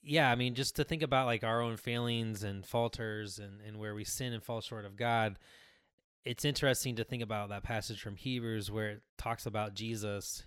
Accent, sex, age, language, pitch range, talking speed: American, male, 20-39, English, 105-135 Hz, 210 wpm